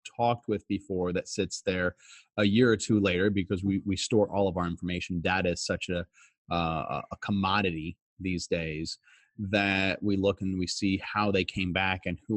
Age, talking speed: 30-49, 195 wpm